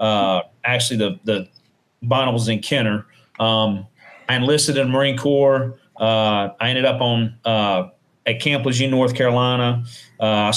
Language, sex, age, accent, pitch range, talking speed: English, male, 40-59, American, 115-135 Hz, 140 wpm